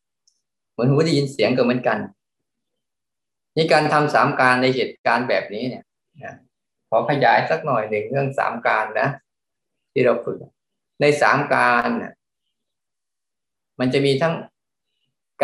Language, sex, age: Thai, male, 20-39